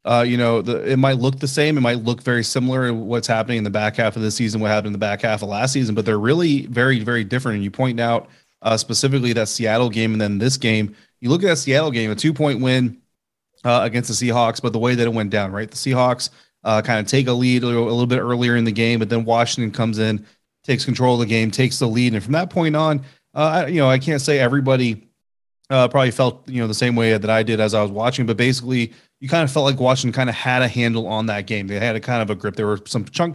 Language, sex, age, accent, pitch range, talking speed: English, male, 30-49, American, 110-125 Hz, 285 wpm